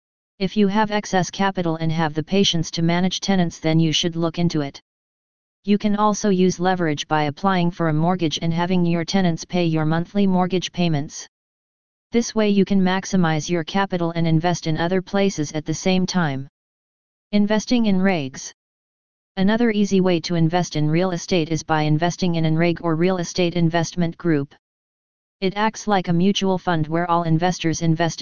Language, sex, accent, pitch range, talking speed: English, female, American, 165-190 Hz, 180 wpm